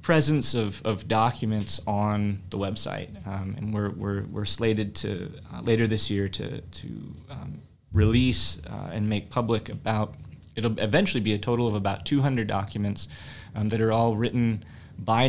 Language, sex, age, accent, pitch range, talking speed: English, male, 30-49, American, 100-115 Hz, 165 wpm